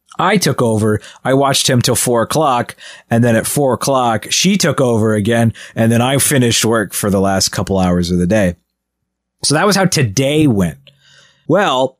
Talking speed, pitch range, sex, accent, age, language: 190 wpm, 105-135 Hz, male, American, 30-49, English